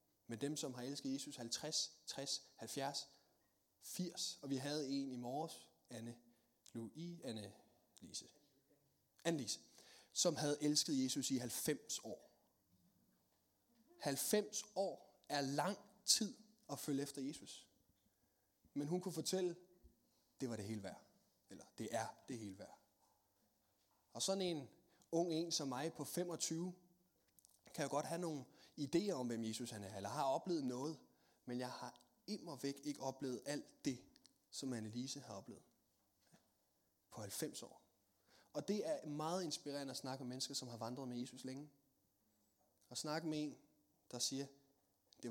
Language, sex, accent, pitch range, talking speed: Danish, male, native, 115-155 Hz, 150 wpm